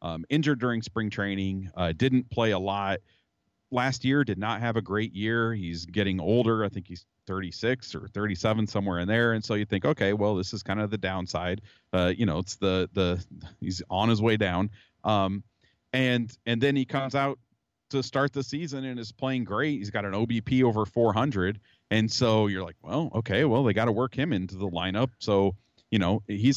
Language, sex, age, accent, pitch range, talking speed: English, male, 40-59, American, 95-120 Hz, 210 wpm